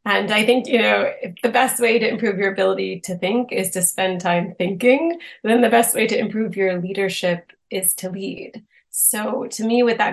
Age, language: 30-49, English